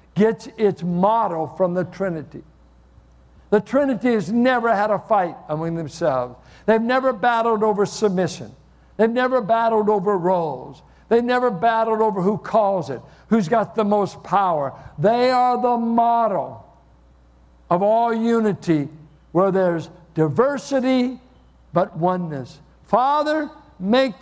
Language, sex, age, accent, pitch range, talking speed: English, male, 60-79, American, 155-220 Hz, 125 wpm